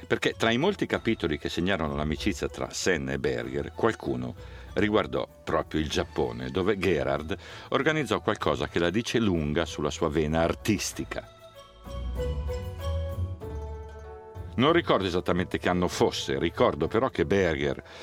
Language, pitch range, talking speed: Italian, 80-110 Hz, 130 wpm